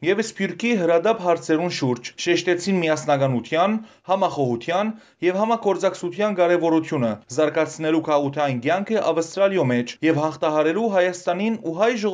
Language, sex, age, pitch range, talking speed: English, male, 30-49, 155-205 Hz, 100 wpm